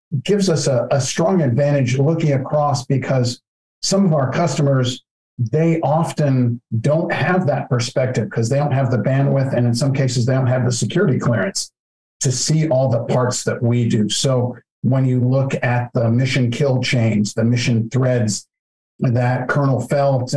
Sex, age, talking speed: male, 50-69, 170 wpm